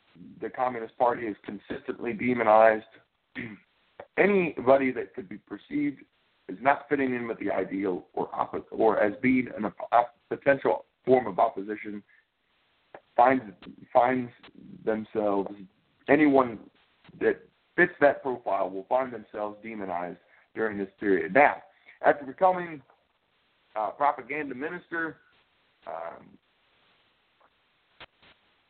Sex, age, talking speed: male, 50-69, 100 wpm